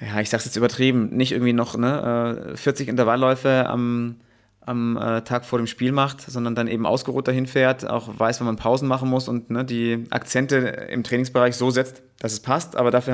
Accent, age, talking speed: German, 30-49, 205 wpm